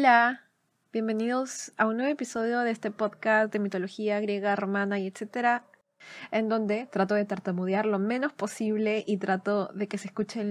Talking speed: 165 wpm